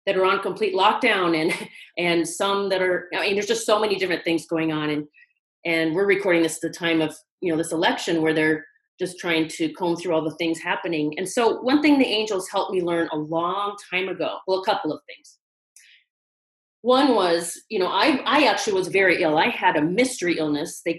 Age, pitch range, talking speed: 30-49, 170-215 Hz, 225 wpm